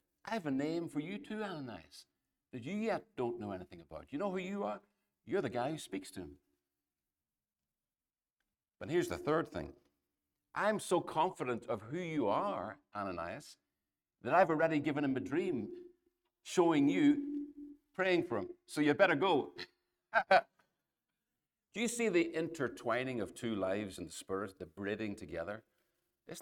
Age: 60-79